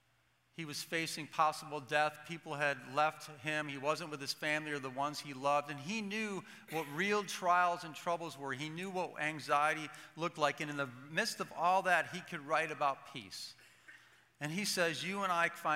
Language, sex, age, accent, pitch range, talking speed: English, male, 40-59, American, 140-175 Hz, 200 wpm